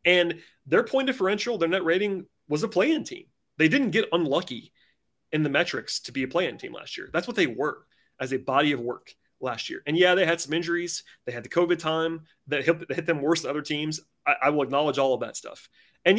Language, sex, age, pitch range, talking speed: English, male, 30-49, 135-175 Hz, 235 wpm